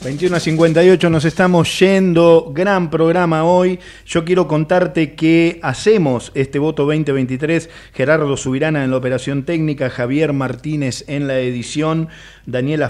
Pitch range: 135-170 Hz